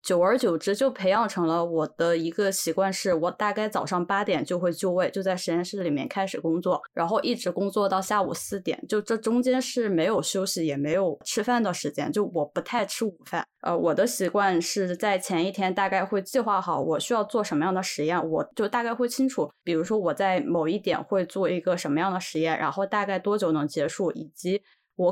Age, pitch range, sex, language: 20-39, 170-215 Hz, female, Chinese